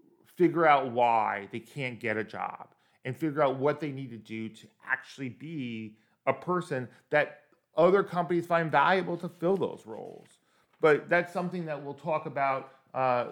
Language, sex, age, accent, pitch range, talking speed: English, male, 40-59, American, 125-170 Hz, 170 wpm